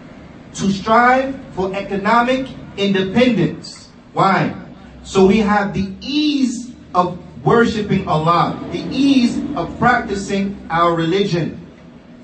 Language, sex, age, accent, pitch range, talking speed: English, male, 40-59, American, 195-235 Hz, 100 wpm